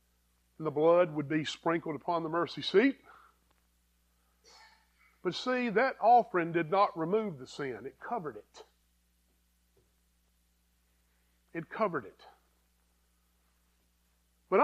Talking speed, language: 105 wpm, English